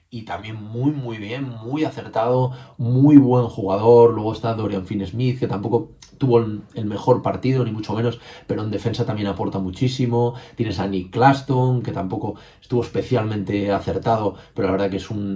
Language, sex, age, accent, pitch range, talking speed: Spanish, male, 20-39, Spanish, 100-120 Hz, 175 wpm